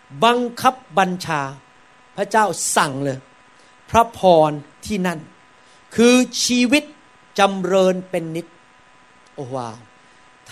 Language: Thai